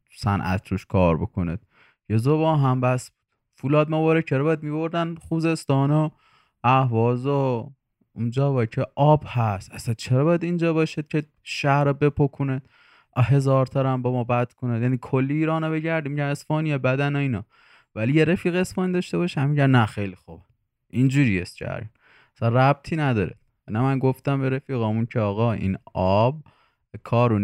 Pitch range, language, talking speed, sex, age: 110-145 Hz, Persian, 155 wpm, male, 20-39